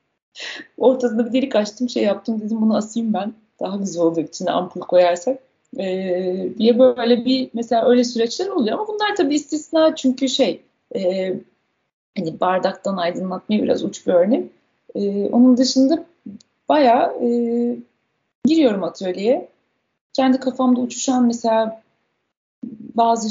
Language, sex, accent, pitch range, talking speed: Turkish, female, native, 200-260 Hz, 125 wpm